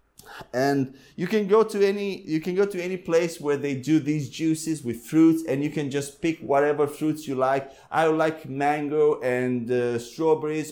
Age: 30-49